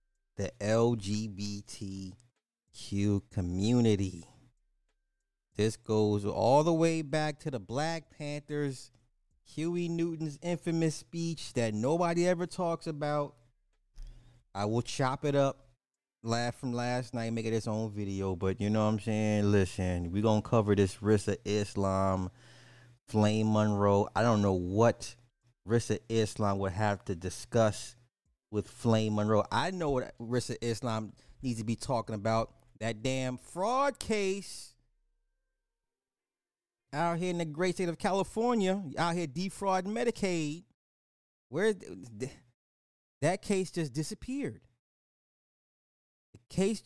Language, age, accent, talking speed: English, 30-49, American, 125 wpm